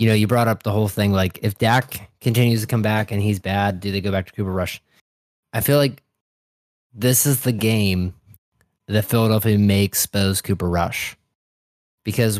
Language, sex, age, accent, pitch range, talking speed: English, male, 20-39, American, 100-125 Hz, 190 wpm